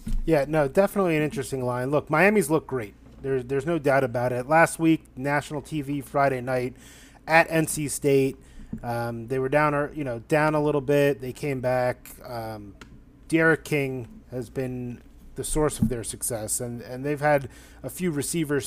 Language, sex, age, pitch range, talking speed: English, male, 30-49, 125-150 Hz, 180 wpm